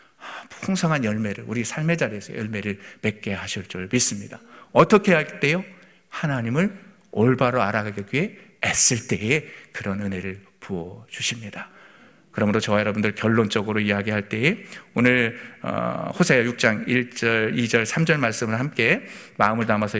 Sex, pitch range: male, 115-165 Hz